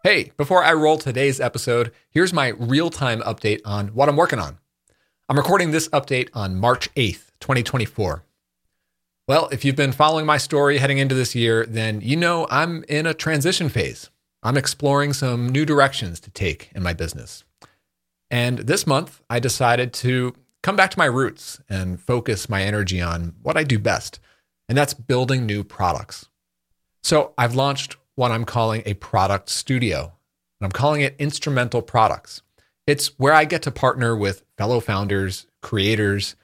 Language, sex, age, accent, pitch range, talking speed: English, male, 40-59, American, 105-145 Hz, 170 wpm